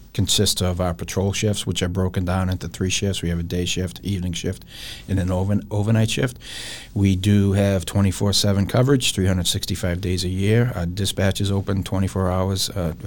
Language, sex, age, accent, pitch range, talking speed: English, male, 40-59, American, 90-105 Hz, 185 wpm